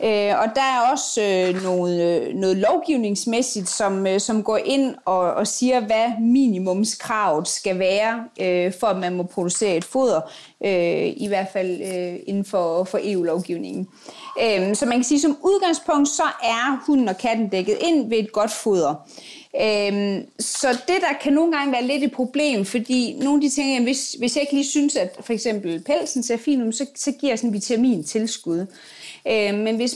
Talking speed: 180 wpm